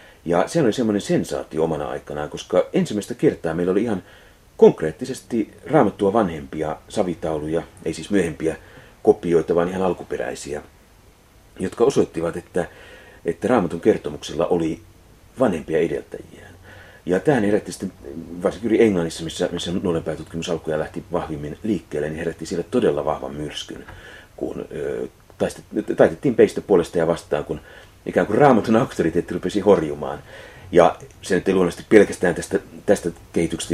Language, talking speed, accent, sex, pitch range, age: Finnish, 130 wpm, native, male, 80-90 Hz, 40-59